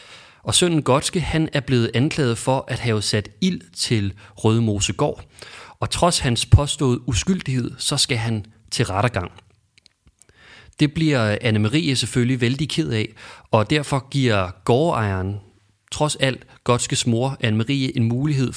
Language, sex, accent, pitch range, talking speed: English, male, Danish, 105-130 Hz, 135 wpm